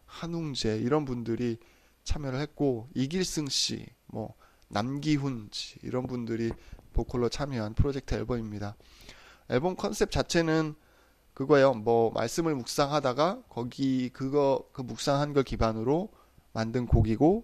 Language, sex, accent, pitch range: Korean, male, native, 115-145 Hz